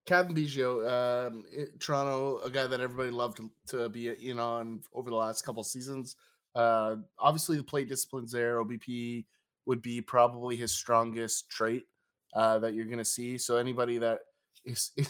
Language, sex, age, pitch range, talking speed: English, male, 20-39, 115-135 Hz, 175 wpm